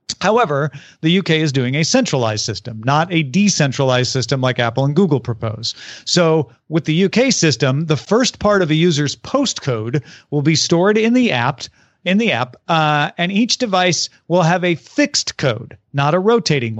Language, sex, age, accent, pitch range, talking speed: English, male, 40-59, American, 140-185 Hz, 180 wpm